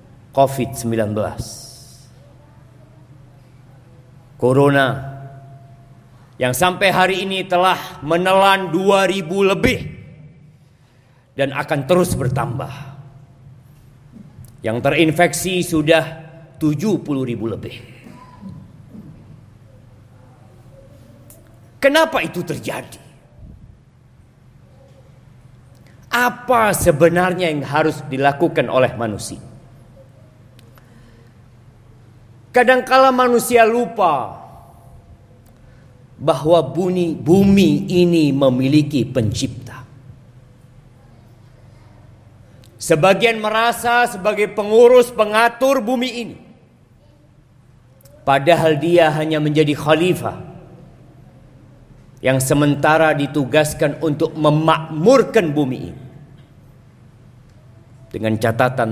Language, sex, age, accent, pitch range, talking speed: Indonesian, male, 40-59, native, 125-160 Hz, 60 wpm